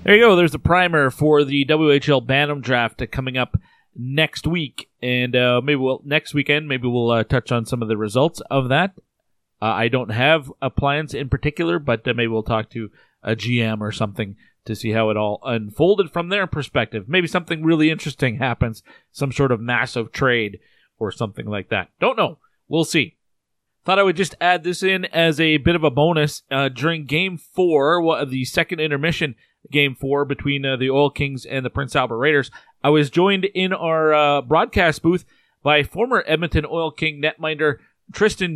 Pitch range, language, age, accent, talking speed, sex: 125-160 Hz, English, 30-49, American, 200 wpm, male